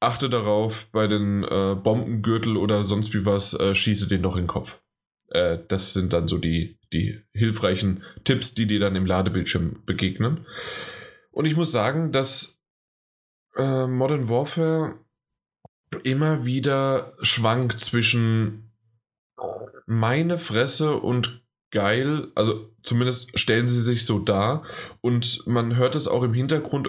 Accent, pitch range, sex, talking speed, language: German, 110-130 Hz, male, 140 wpm, German